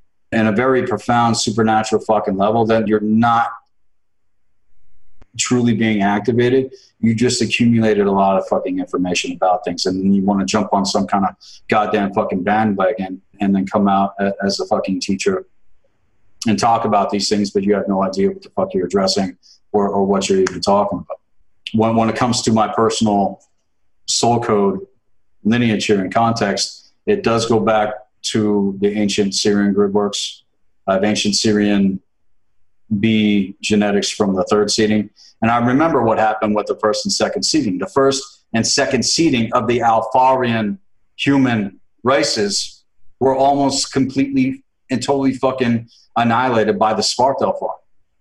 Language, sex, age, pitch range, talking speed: English, male, 40-59, 100-115 Hz, 160 wpm